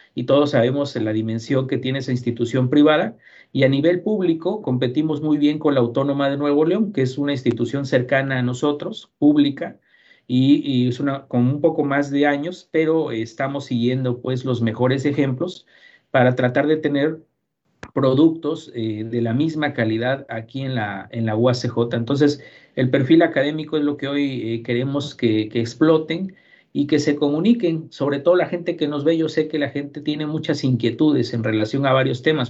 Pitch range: 120-150 Hz